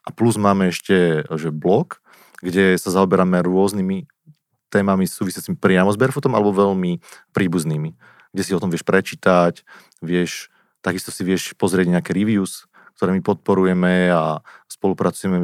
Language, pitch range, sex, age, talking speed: Slovak, 85-100 Hz, male, 30-49, 140 wpm